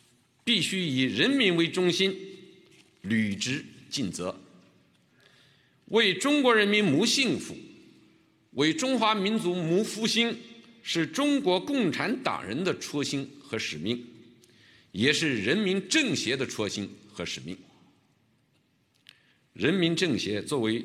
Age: 50-69